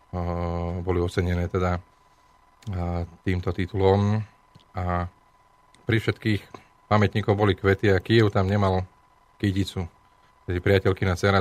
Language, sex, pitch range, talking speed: Slovak, male, 95-110 Hz, 95 wpm